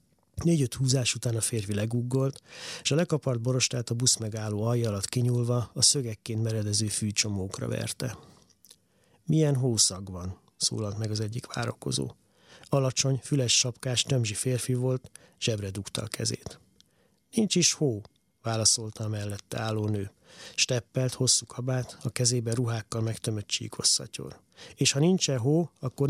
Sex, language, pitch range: male, Hungarian, 110-135 Hz